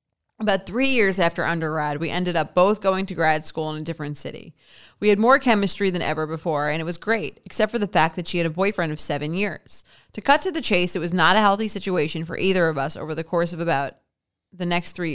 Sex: female